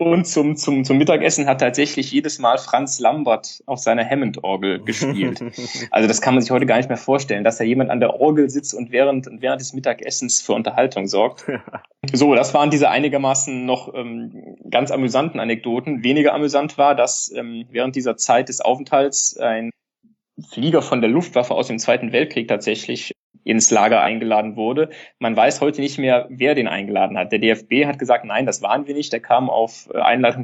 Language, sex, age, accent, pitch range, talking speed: German, male, 20-39, German, 115-145 Hz, 190 wpm